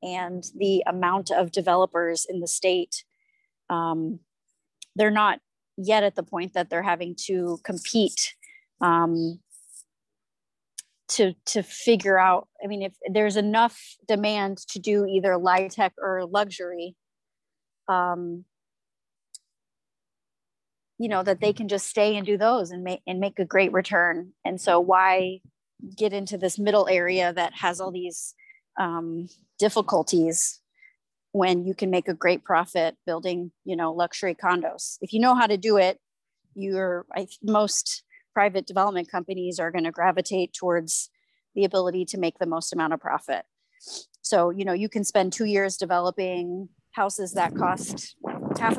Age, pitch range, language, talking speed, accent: 30-49, 180-215 Hz, English, 145 wpm, American